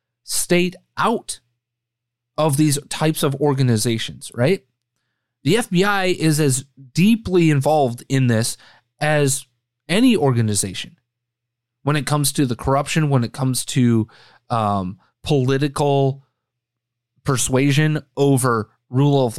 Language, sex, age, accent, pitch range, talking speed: English, male, 30-49, American, 120-150 Hz, 110 wpm